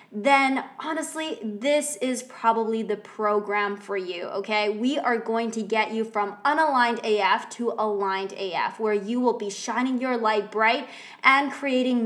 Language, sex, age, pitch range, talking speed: English, female, 20-39, 215-270 Hz, 160 wpm